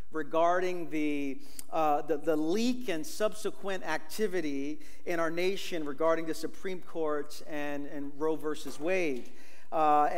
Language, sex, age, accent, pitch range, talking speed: English, male, 40-59, American, 160-200 Hz, 130 wpm